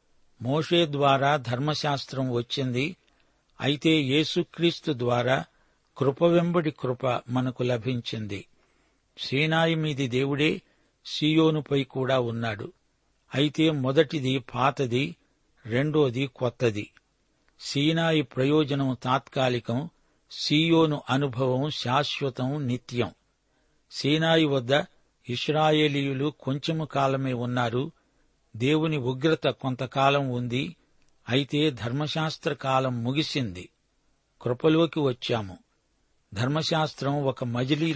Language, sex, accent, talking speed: Telugu, male, native, 75 wpm